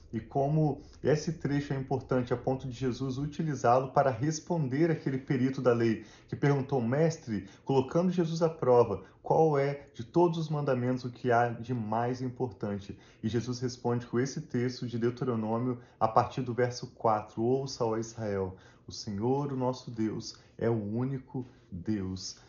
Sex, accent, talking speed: male, Brazilian, 165 wpm